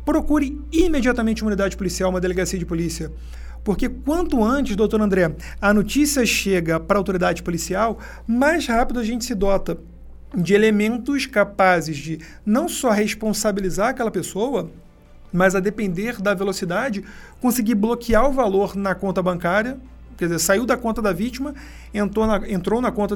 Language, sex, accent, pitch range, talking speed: Portuguese, male, Brazilian, 190-235 Hz, 155 wpm